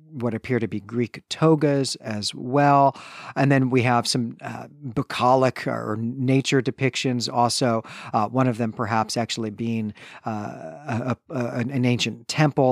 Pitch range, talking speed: 115-140 Hz, 150 wpm